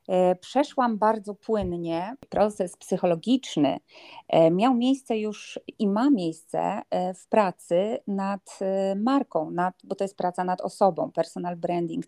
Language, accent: Polish, native